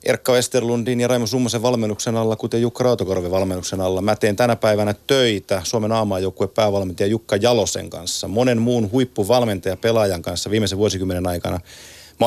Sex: male